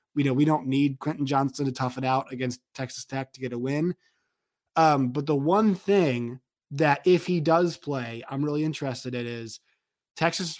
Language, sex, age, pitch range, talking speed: English, male, 20-39, 130-165 Hz, 195 wpm